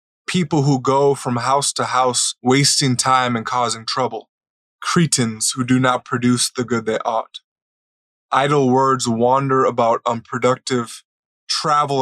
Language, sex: English, male